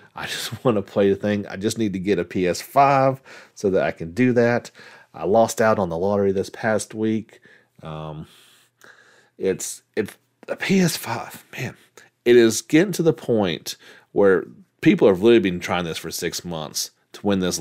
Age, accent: 40-59, American